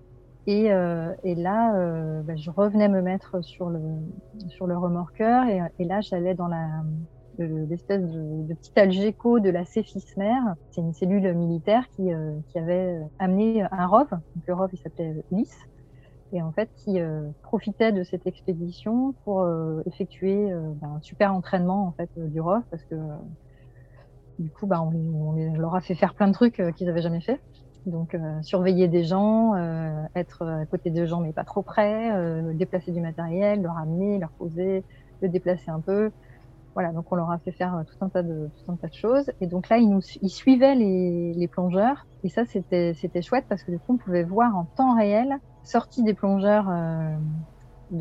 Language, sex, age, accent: French, female, 30-49, French